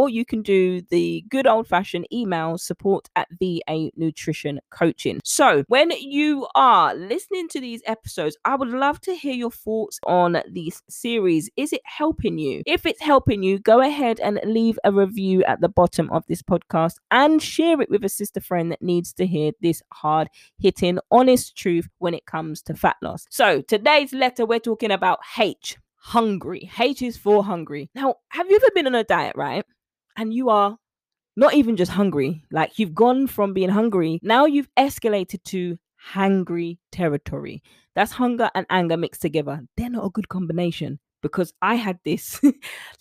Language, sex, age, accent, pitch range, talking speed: English, female, 20-39, British, 170-235 Hz, 180 wpm